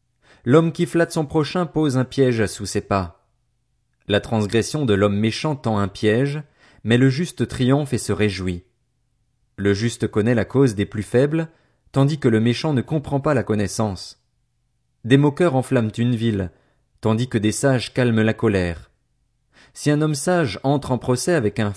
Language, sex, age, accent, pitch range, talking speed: French, male, 30-49, French, 110-140 Hz, 175 wpm